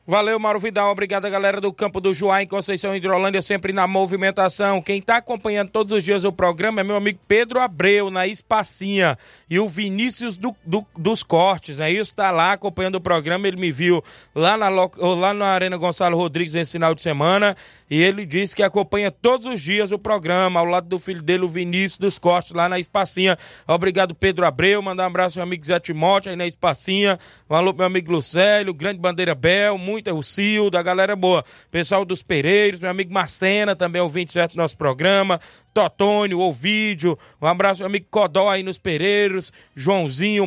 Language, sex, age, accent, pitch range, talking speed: Portuguese, male, 20-39, Brazilian, 175-200 Hz, 195 wpm